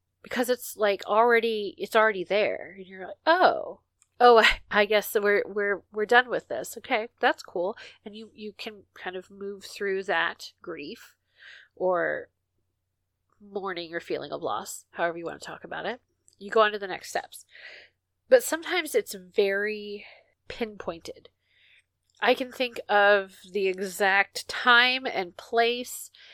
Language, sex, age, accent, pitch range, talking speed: English, female, 30-49, American, 185-235 Hz, 155 wpm